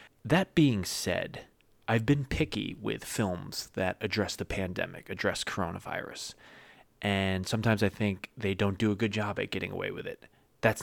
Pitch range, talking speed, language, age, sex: 95-110 Hz, 165 wpm, English, 20-39, male